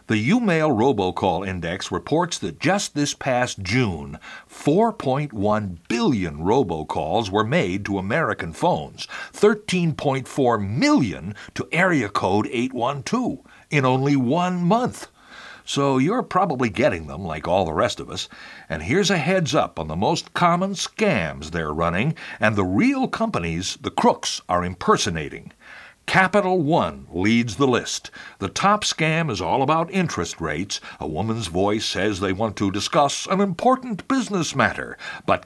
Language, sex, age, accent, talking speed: English, male, 60-79, American, 145 wpm